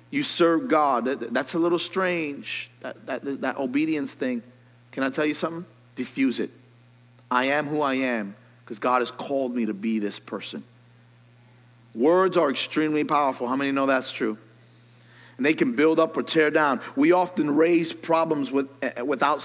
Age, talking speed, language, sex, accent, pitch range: 40-59, 165 wpm, English, male, American, 115-150 Hz